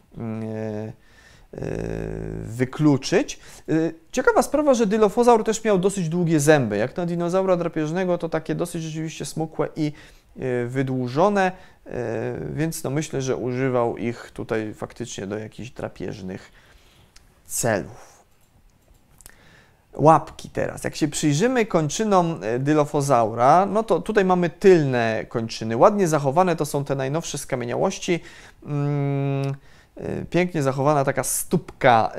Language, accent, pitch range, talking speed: Polish, native, 140-185 Hz, 105 wpm